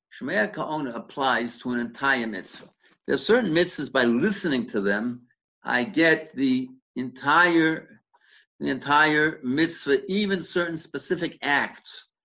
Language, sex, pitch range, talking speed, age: English, male, 135-200 Hz, 125 wpm, 60-79